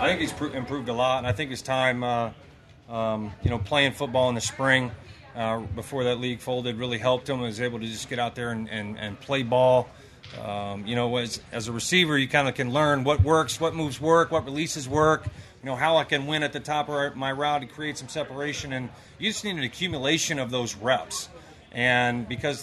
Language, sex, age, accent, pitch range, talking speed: English, male, 40-59, American, 120-145 Hz, 235 wpm